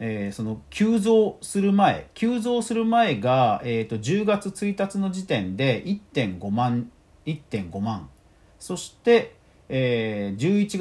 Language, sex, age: Japanese, male, 40-59